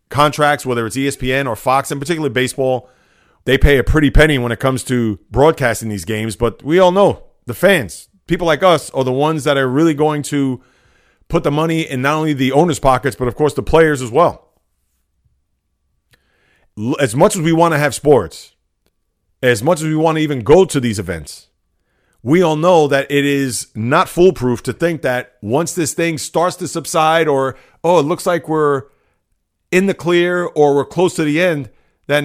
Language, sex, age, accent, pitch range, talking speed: English, male, 40-59, American, 125-165 Hz, 195 wpm